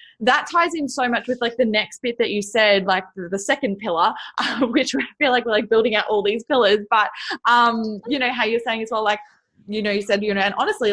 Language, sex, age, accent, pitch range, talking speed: English, female, 20-39, Australian, 195-230 Hz, 255 wpm